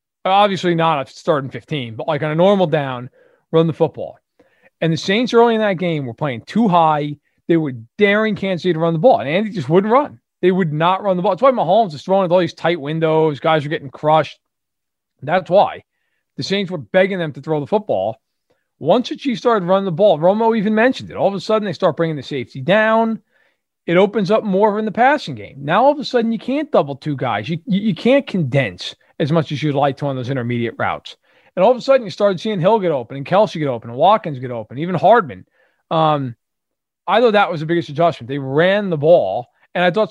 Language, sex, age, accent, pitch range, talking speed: English, male, 40-59, American, 150-205 Hz, 240 wpm